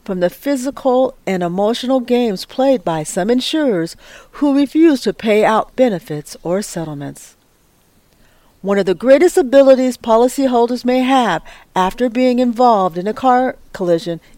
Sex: female